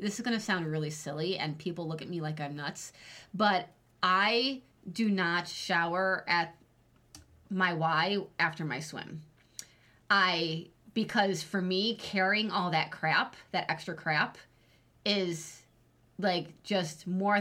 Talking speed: 140 wpm